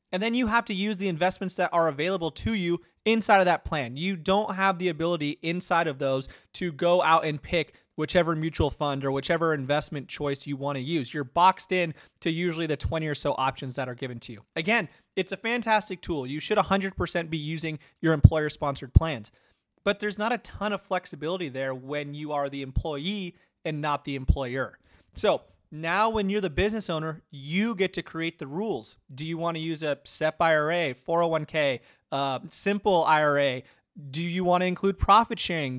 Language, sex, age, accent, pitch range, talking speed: English, male, 30-49, American, 150-190 Hz, 200 wpm